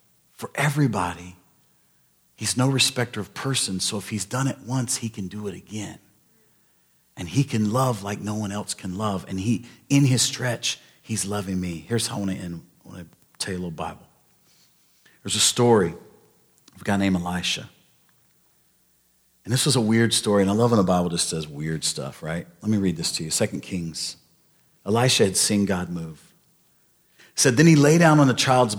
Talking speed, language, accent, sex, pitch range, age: 190 wpm, English, American, male, 105-140 Hz, 40-59